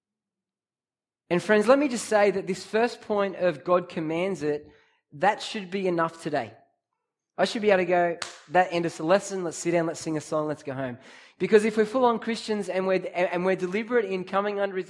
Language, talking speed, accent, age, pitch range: English, 215 wpm, Australian, 20-39, 175-215 Hz